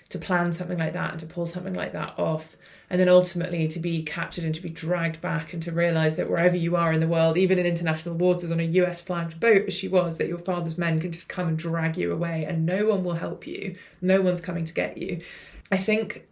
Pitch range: 160-180 Hz